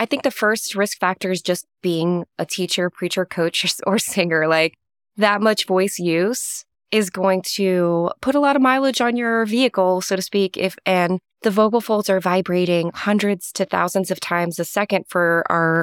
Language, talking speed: English, 190 wpm